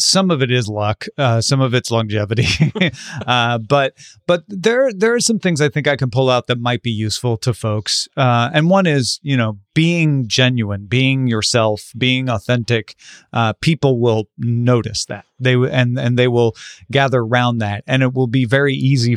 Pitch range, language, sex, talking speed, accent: 115-140 Hz, English, male, 190 wpm, American